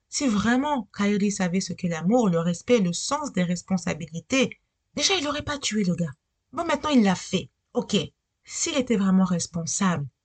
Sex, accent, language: female, French, French